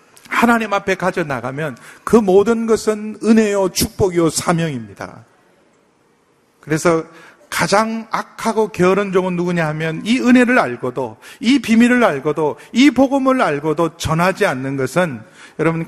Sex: male